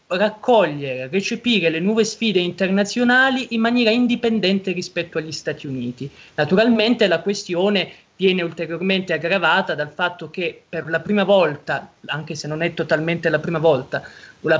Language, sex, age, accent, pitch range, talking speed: Italian, male, 20-39, native, 165-200 Hz, 145 wpm